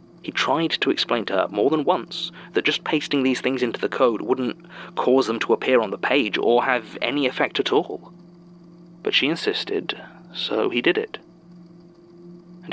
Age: 30-49